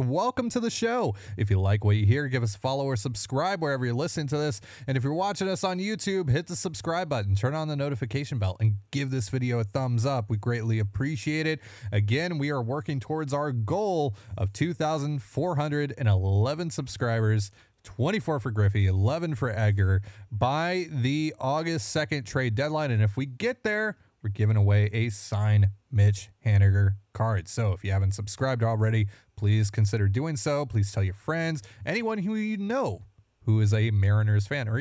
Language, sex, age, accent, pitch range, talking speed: English, male, 20-39, American, 105-150 Hz, 185 wpm